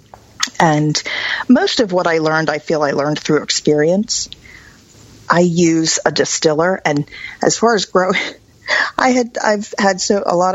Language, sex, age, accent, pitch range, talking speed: English, female, 40-59, American, 150-195 Hz, 165 wpm